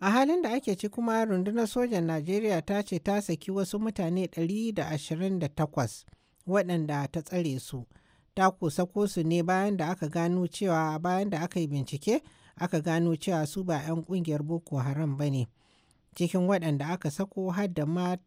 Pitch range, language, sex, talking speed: 150-185 Hz, English, male, 160 wpm